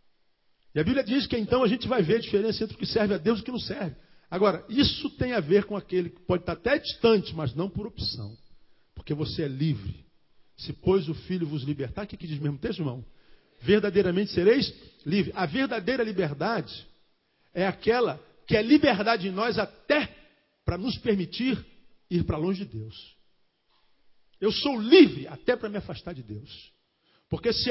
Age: 50-69